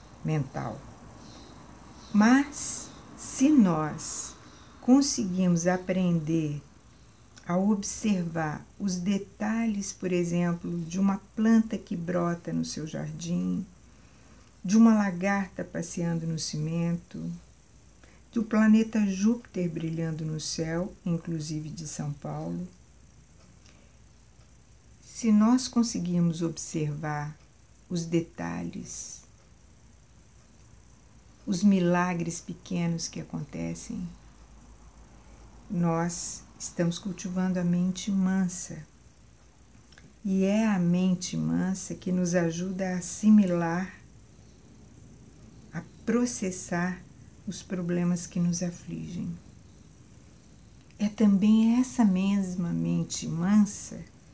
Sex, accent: female, Brazilian